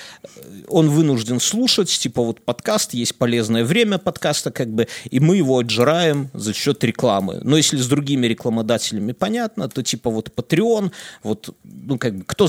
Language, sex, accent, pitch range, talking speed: Russian, male, native, 120-170 Hz, 165 wpm